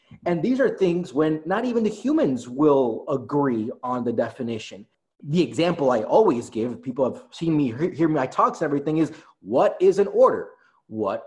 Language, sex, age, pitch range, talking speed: English, male, 30-49, 140-200 Hz, 185 wpm